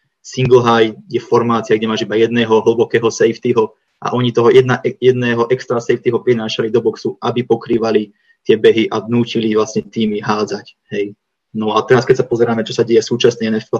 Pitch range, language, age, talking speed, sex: 115-125 Hz, Czech, 20-39, 180 wpm, male